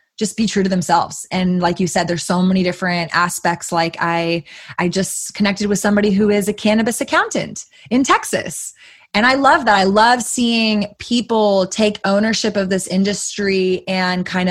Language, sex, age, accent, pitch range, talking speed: English, female, 20-39, American, 175-220 Hz, 180 wpm